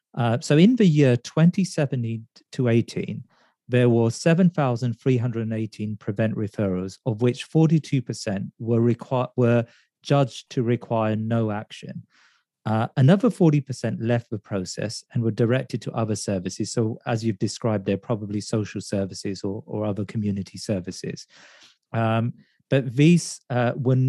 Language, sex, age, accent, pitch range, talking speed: English, male, 40-59, British, 110-135 Hz, 135 wpm